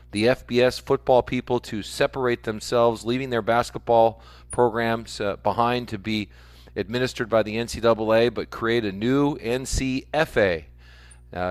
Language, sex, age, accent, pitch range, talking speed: English, male, 40-59, American, 100-125 Hz, 125 wpm